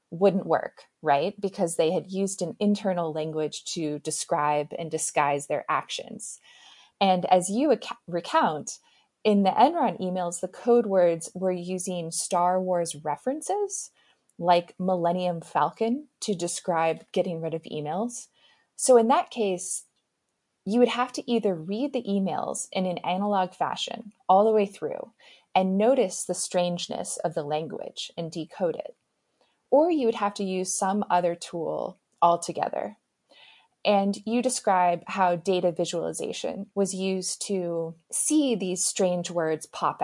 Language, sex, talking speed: English, female, 140 wpm